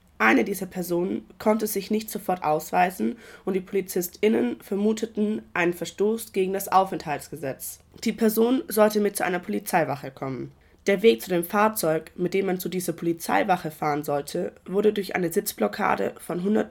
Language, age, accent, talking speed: German, 20-39, German, 160 wpm